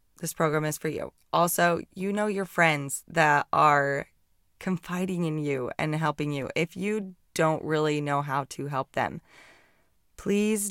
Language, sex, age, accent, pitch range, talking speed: English, female, 20-39, American, 150-185 Hz, 155 wpm